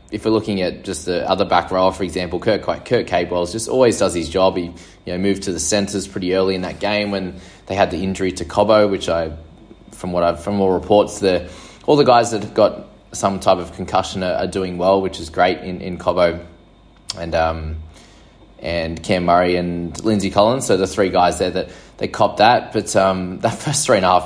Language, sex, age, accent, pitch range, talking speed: English, male, 20-39, Australian, 90-105 Hz, 230 wpm